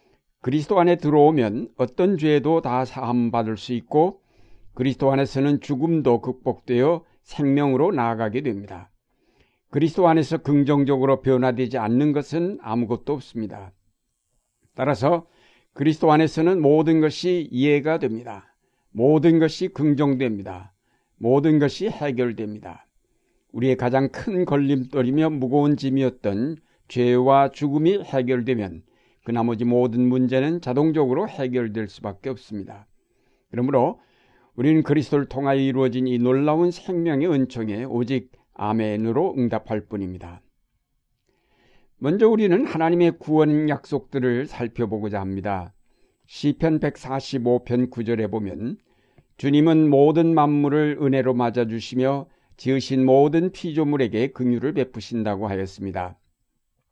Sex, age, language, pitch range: male, 60-79, Korean, 120-150 Hz